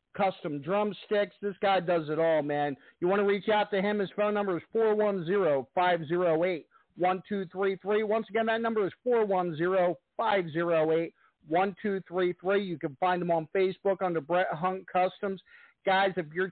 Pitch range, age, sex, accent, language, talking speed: 170-205 Hz, 50-69, male, American, English, 155 wpm